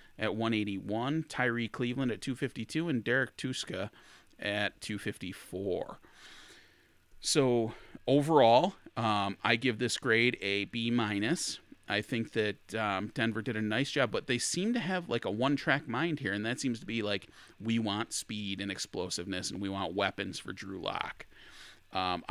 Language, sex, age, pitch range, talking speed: English, male, 30-49, 100-120 Hz, 160 wpm